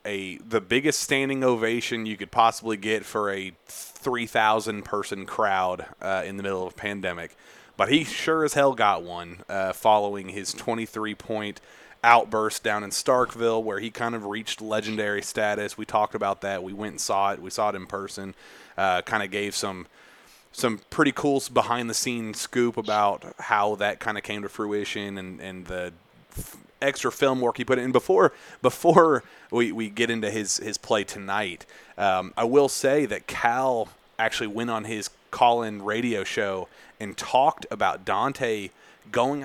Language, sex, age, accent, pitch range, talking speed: English, male, 30-49, American, 100-115 Hz, 170 wpm